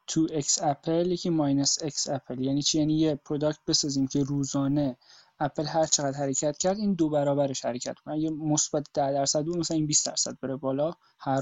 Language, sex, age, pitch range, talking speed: Persian, male, 20-39, 150-170 Hz, 195 wpm